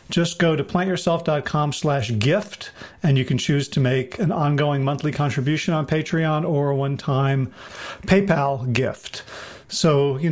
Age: 40-59